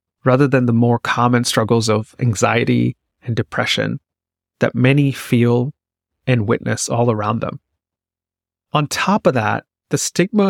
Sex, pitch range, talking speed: male, 90-135 Hz, 135 wpm